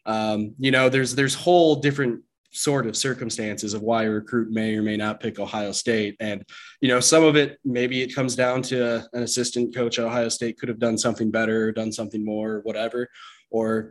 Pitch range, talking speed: 110-125 Hz, 205 wpm